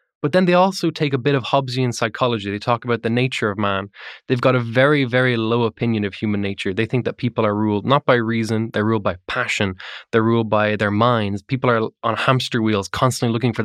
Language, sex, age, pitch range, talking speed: English, male, 20-39, 110-130 Hz, 235 wpm